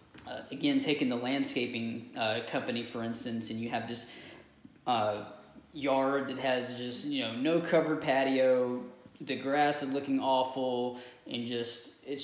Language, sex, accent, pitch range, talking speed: English, male, American, 125-155 Hz, 145 wpm